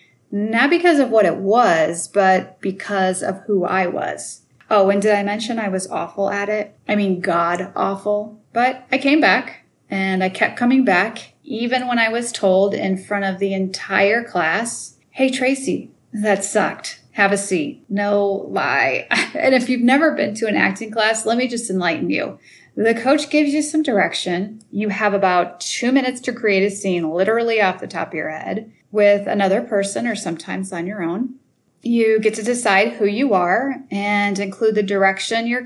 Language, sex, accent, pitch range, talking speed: English, female, American, 195-240 Hz, 185 wpm